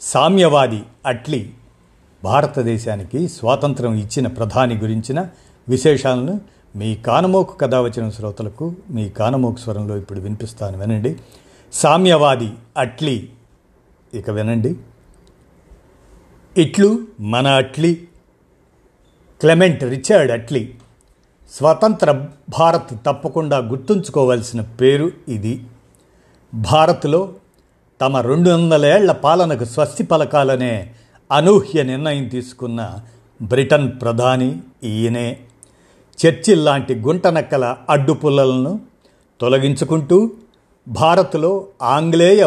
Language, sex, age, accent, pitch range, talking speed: Telugu, male, 50-69, native, 120-160 Hz, 80 wpm